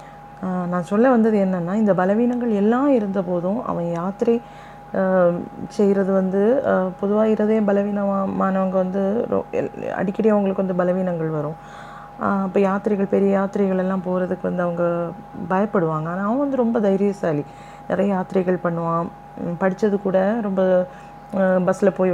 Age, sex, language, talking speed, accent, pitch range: 30-49, female, Tamil, 120 wpm, native, 175-205 Hz